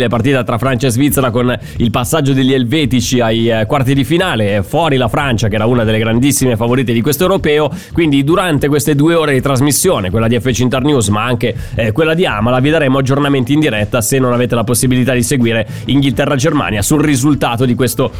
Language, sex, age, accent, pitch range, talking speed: Italian, male, 30-49, native, 120-145 Hz, 195 wpm